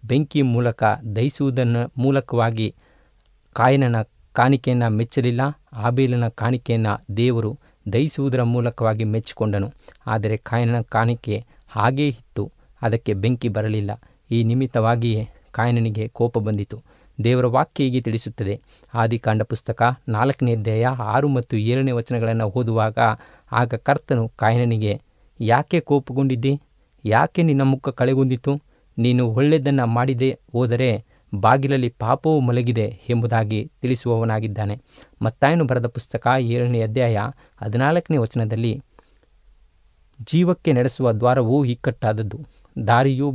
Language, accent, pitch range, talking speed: Kannada, native, 110-130 Hz, 95 wpm